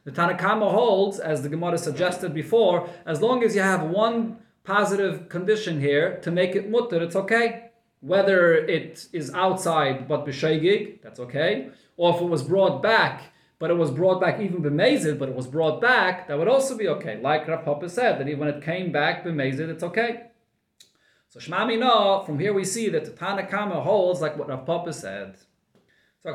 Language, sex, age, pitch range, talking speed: English, male, 30-49, 150-190 Hz, 190 wpm